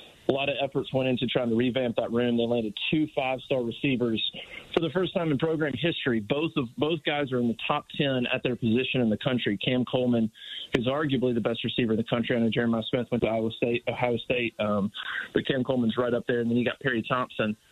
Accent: American